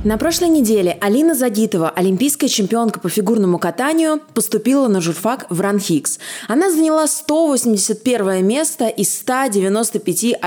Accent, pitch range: native, 200-275 Hz